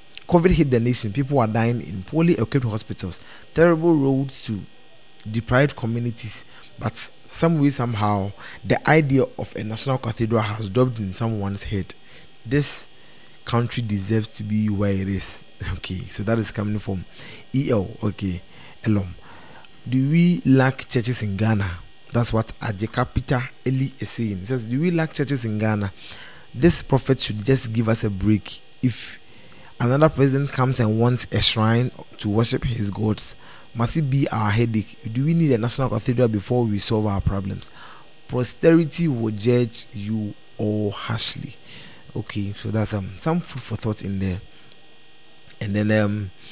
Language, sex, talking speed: English, male, 165 wpm